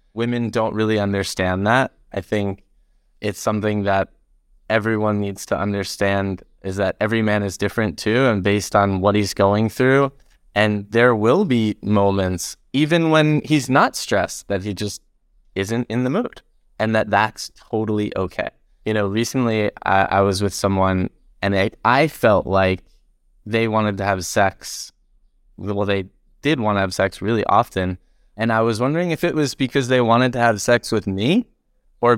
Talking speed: 175 wpm